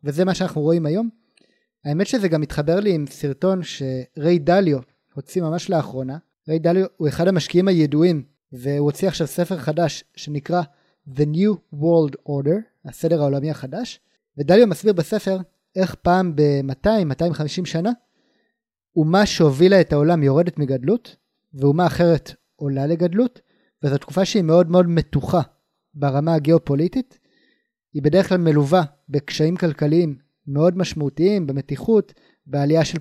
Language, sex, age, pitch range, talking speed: Hebrew, male, 30-49, 145-185 Hz, 130 wpm